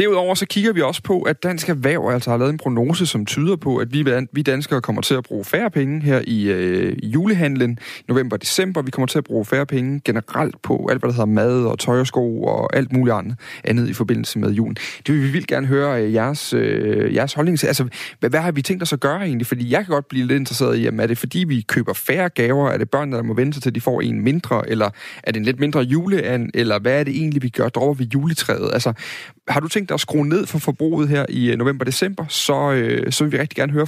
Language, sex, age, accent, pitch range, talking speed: Danish, male, 30-49, native, 120-150 Hz, 255 wpm